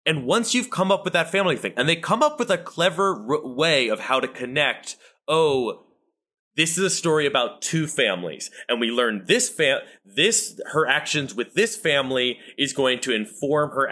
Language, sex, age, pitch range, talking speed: English, male, 30-49, 115-180 Hz, 190 wpm